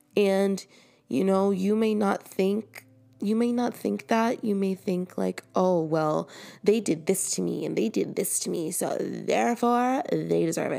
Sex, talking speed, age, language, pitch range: female, 185 wpm, 20-39, English, 155-195 Hz